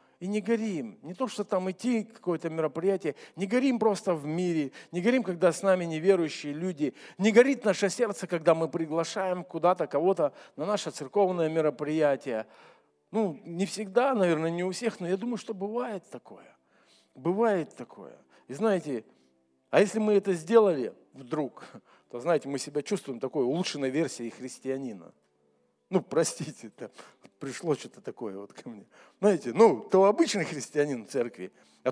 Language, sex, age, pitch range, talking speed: Russian, male, 50-69, 145-200 Hz, 155 wpm